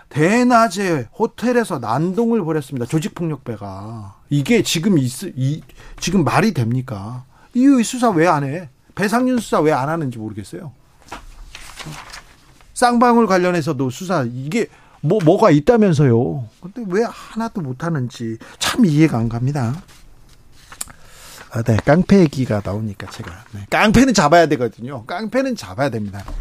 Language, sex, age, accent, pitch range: Korean, male, 40-59, native, 125-200 Hz